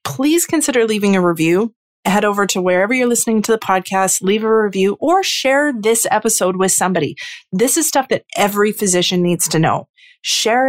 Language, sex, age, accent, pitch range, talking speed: English, female, 30-49, American, 170-215 Hz, 185 wpm